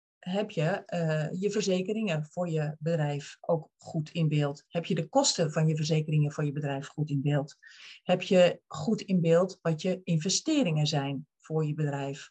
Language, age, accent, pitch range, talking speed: Dutch, 40-59, Dutch, 160-215 Hz, 180 wpm